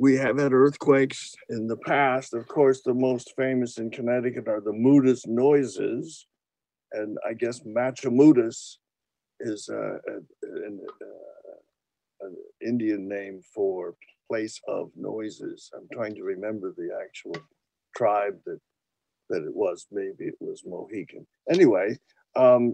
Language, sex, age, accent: English, male, 60-79, American